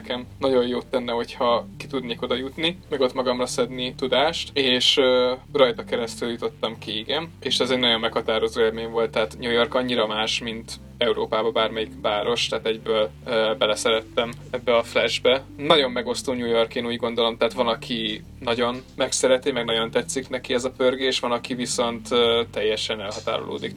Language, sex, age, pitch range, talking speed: Hungarian, male, 20-39, 115-130 Hz, 170 wpm